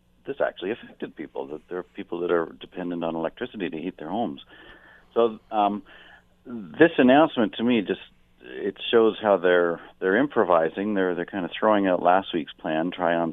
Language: English